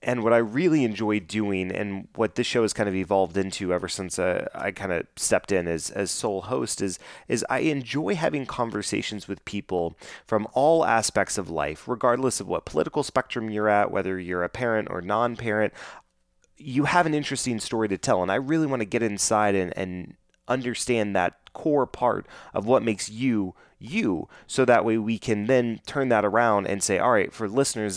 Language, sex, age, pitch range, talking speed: English, male, 30-49, 95-110 Hz, 200 wpm